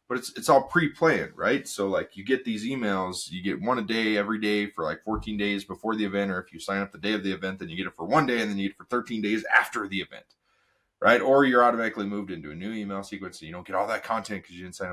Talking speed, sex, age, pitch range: 305 wpm, male, 30-49, 95-115 Hz